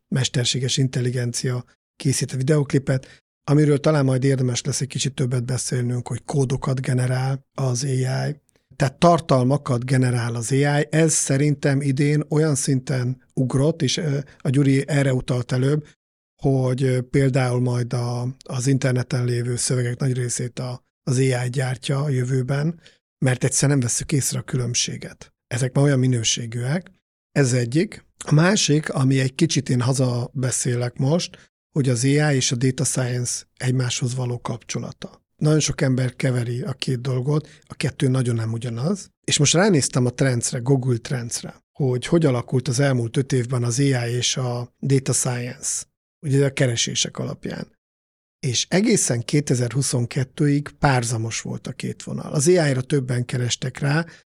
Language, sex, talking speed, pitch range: Hungarian, male, 145 wpm, 125-145 Hz